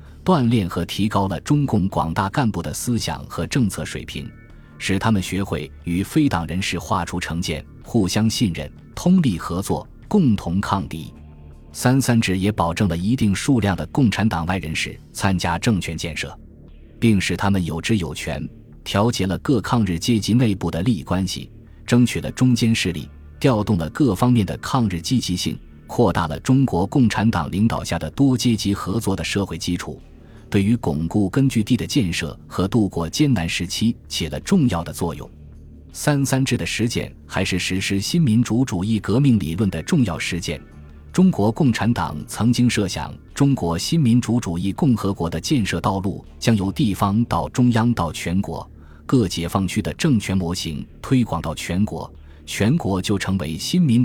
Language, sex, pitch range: Chinese, male, 85-115 Hz